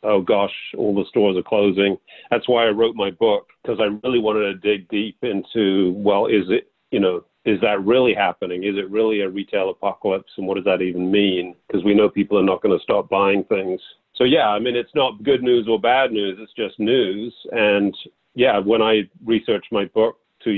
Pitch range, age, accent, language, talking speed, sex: 100-120 Hz, 40-59, American, English, 220 wpm, male